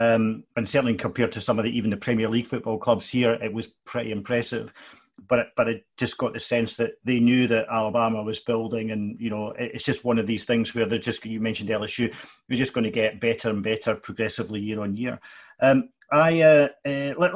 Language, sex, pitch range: English, male, 115-130 Hz